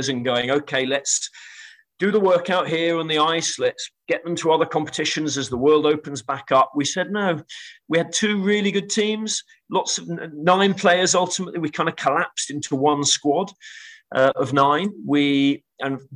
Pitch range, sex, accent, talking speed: 135-175 Hz, male, British, 180 wpm